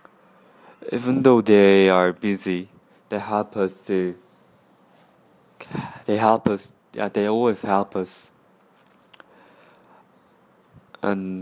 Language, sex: English, male